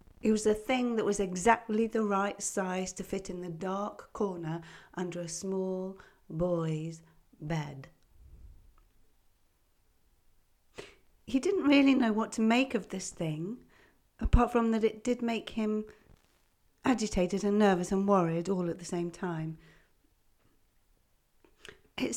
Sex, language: female, English